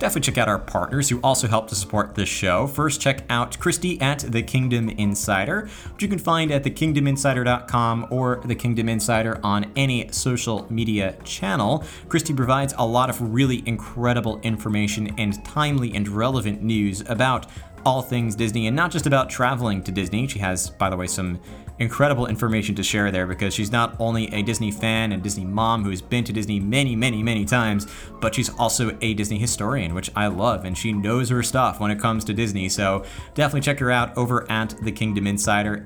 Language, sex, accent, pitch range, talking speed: English, male, American, 105-125 Hz, 195 wpm